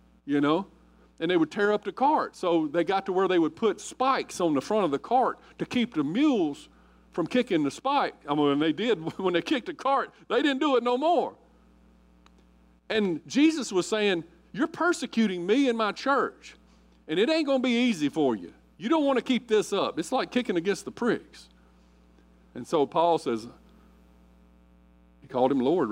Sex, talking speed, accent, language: male, 200 wpm, American, English